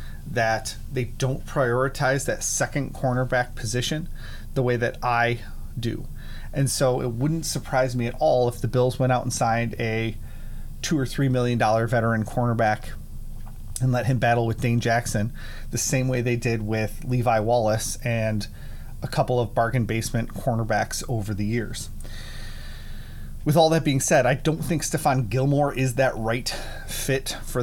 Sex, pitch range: male, 110-130 Hz